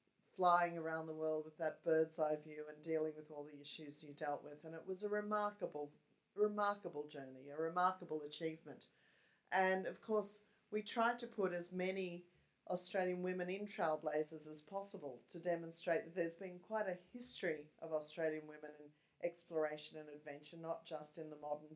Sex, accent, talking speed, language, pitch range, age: female, Australian, 175 wpm, English, 155-180 Hz, 40-59